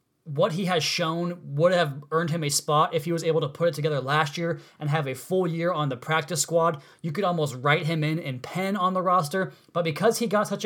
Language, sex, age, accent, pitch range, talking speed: English, male, 20-39, American, 145-170 Hz, 255 wpm